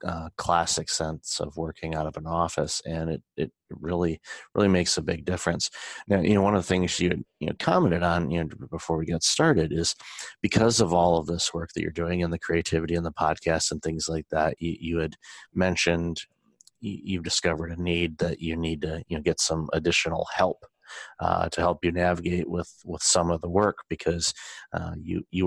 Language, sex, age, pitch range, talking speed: English, male, 30-49, 80-90 Hz, 210 wpm